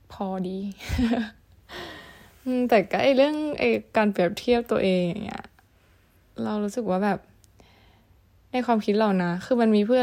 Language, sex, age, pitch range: Thai, female, 10-29, 175-230 Hz